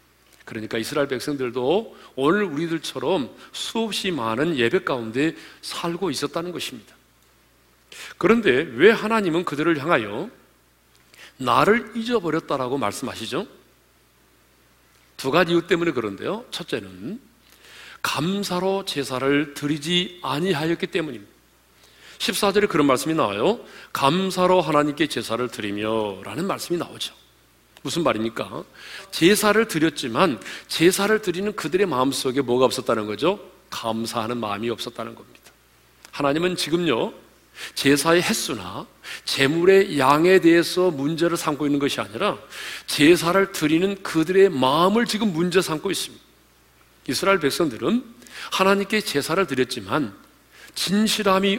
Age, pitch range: 40-59, 120-190 Hz